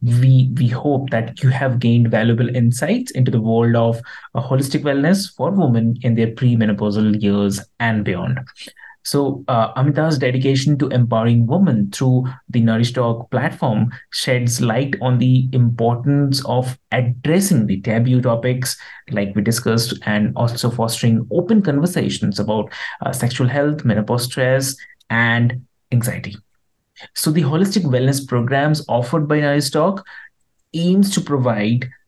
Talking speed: 135 wpm